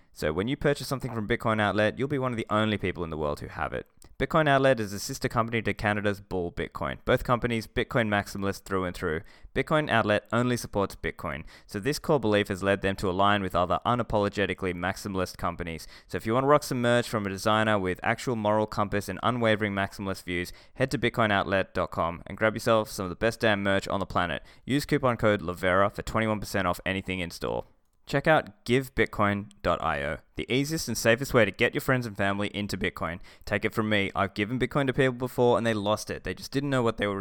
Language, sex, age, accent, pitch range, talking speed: English, male, 20-39, Australian, 95-120 Hz, 225 wpm